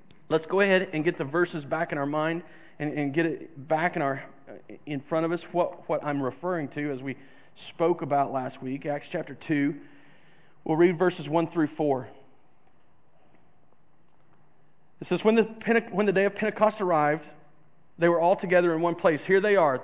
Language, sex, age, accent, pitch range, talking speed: English, male, 40-59, American, 155-190 Hz, 190 wpm